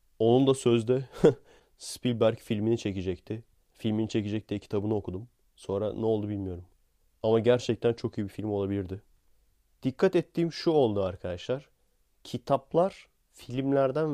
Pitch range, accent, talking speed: 95-125 Hz, native, 120 wpm